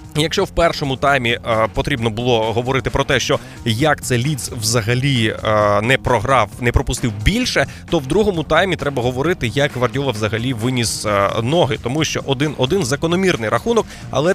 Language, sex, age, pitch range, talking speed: Ukrainian, male, 20-39, 115-150 Hz, 150 wpm